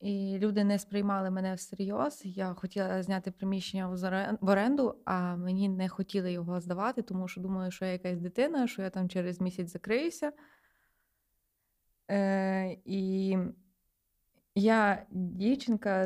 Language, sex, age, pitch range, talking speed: Ukrainian, female, 20-39, 190-215 Hz, 130 wpm